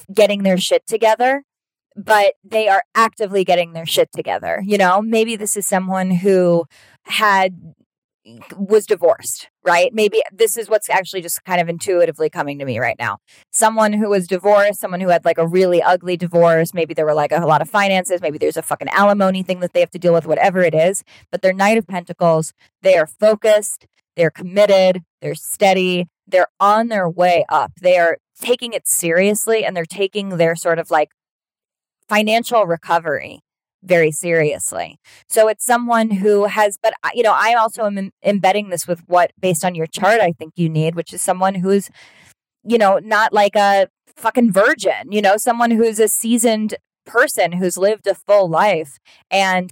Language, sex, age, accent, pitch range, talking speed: English, female, 20-39, American, 175-215 Hz, 185 wpm